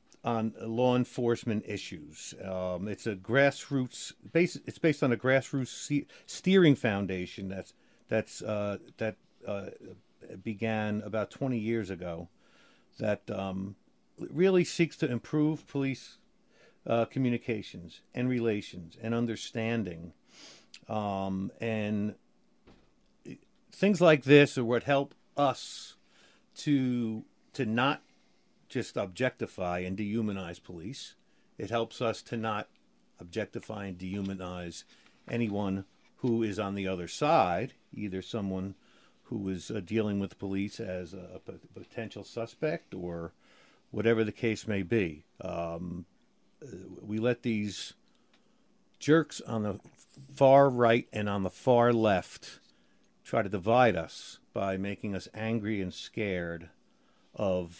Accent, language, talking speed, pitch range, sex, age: American, English, 120 wpm, 95-120 Hz, male, 50-69